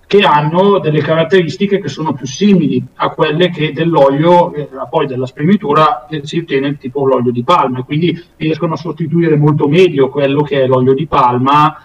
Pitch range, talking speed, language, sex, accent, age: 135-175 Hz, 180 wpm, Italian, male, native, 40-59